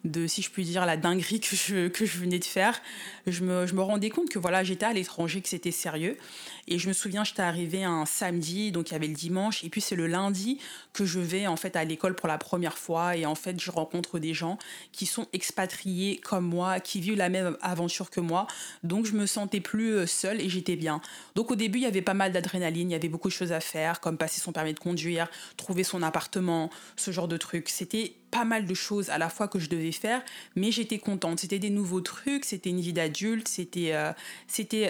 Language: French